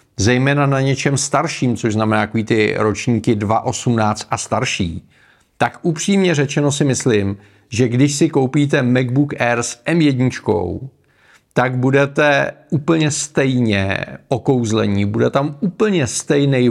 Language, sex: Czech, male